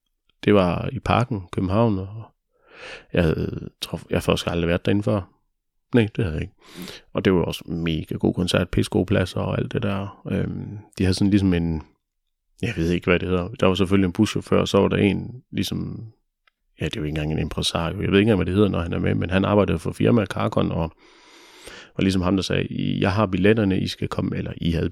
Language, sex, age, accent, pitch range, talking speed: Danish, male, 30-49, native, 90-110 Hz, 225 wpm